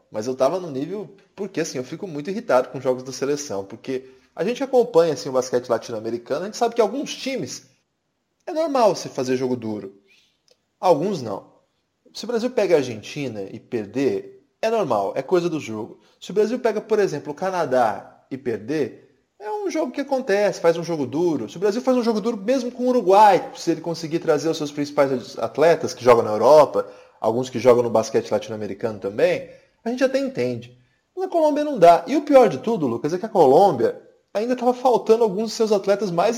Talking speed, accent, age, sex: 210 wpm, Brazilian, 20-39, male